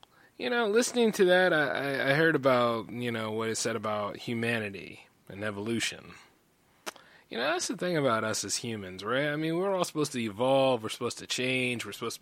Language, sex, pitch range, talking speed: English, male, 120-180 Hz, 205 wpm